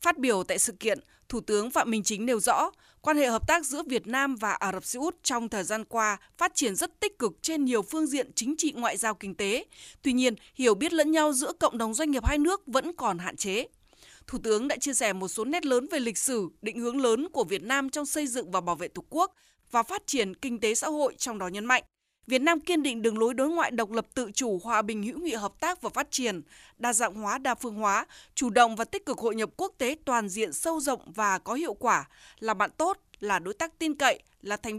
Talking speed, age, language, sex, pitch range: 260 wpm, 20-39, Vietnamese, female, 215-300 Hz